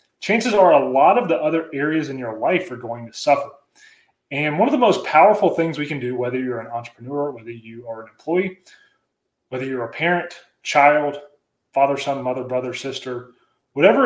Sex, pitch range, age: male, 125-155 Hz, 30-49